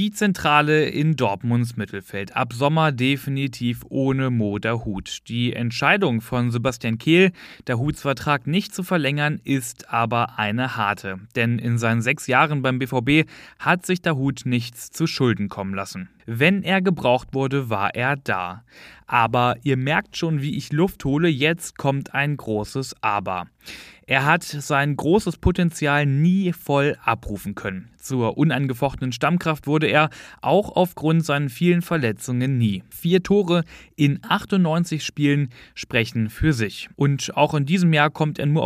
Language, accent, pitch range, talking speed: German, German, 120-165 Hz, 150 wpm